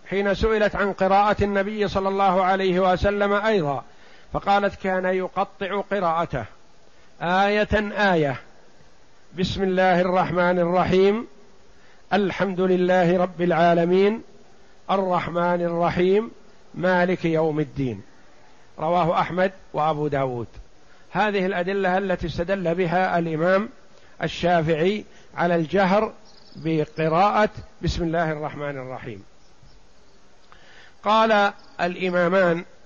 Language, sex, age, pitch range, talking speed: Arabic, male, 50-69, 170-205 Hz, 90 wpm